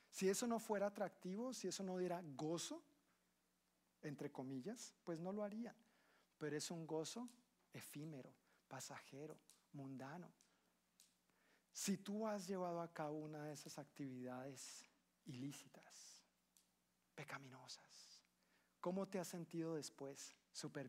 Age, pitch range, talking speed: 50-69, 140-195 Hz, 120 wpm